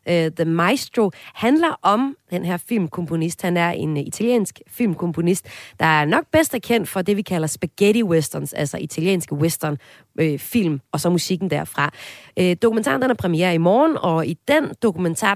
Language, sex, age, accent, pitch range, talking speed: Danish, female, 30-49, native, 155-215 Hz, 160 wpm